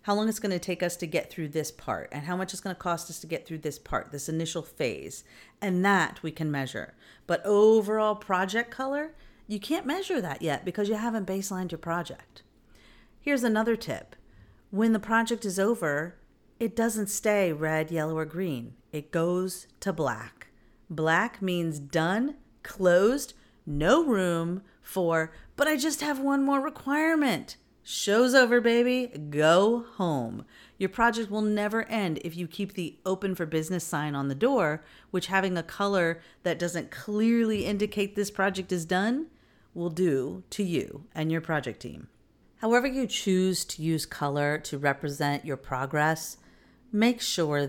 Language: English